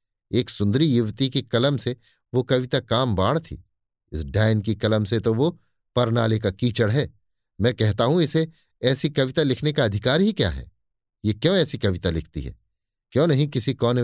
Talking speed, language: 190 wpm, Hindi